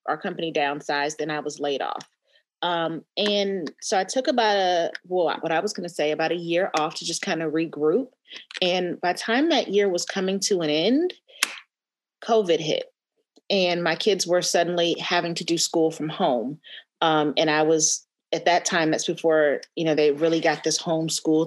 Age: 30-49